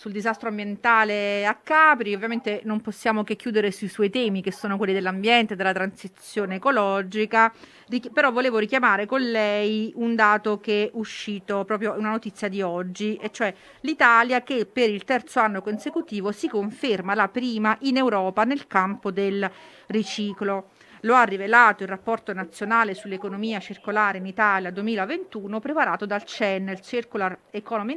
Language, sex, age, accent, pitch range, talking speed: Italian, female, 40-59, native, 200-235 Hz, 155 wpm